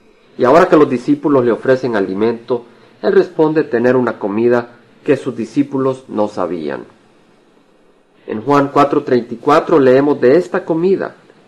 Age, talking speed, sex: 50-69, 130 wpm, male